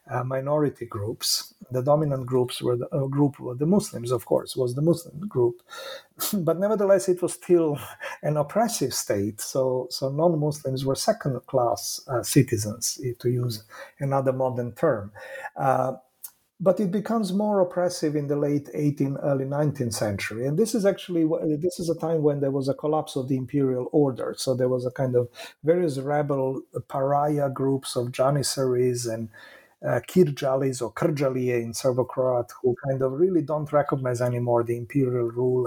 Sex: male